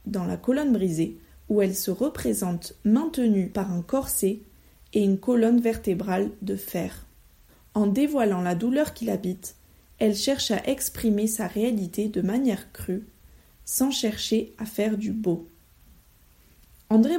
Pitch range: 185-230 Hz